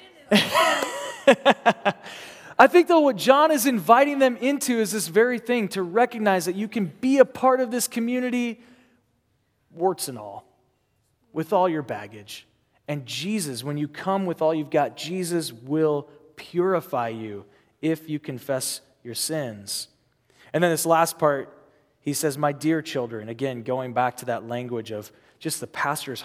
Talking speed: 160 wpm